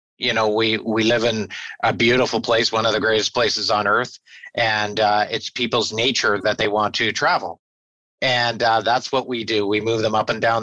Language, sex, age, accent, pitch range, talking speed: English, male, 50-69, American, 105-120 Hz, 215 wpm